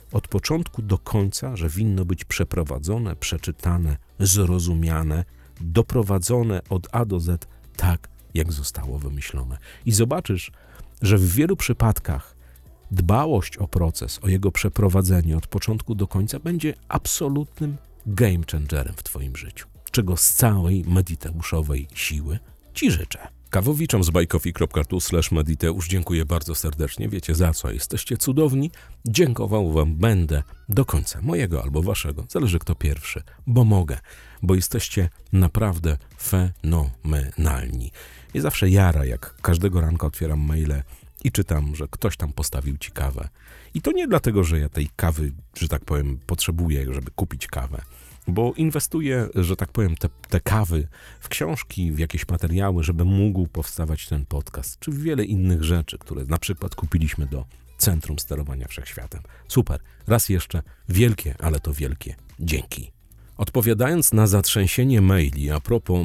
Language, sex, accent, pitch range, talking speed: Polish, male, native, 75-105 Hz, 140 wpm